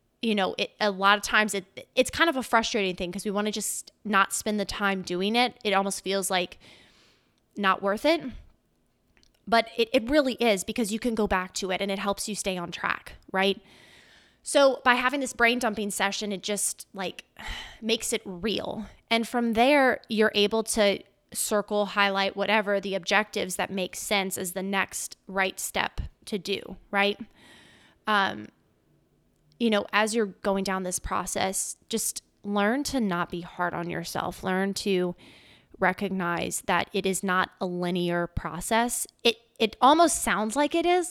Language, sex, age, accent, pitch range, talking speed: English, female, 20-39, American, 190-225 Hz, 175 wpm